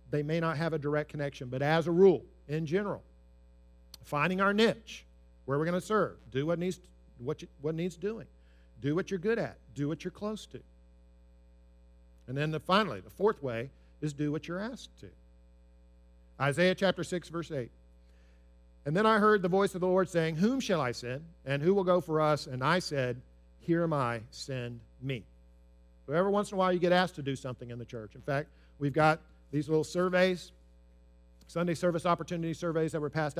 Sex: male